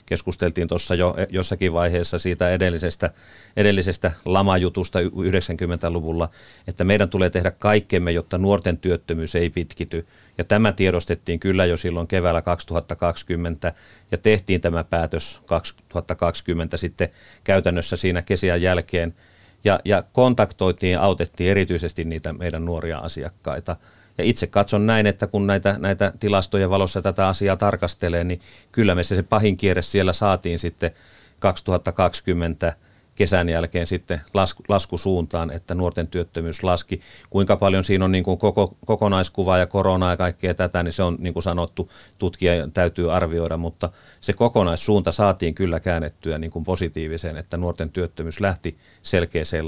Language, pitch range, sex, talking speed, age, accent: Finnish, 85-100 Hz, male, 140 wpm, 30-49, native